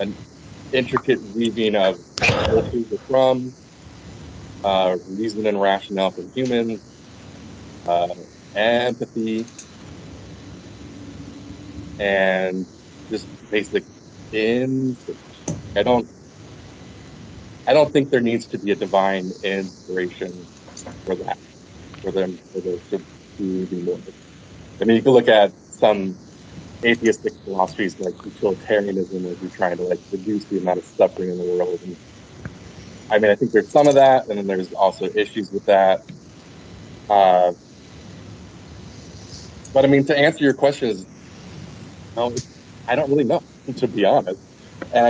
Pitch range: 90-115 Hz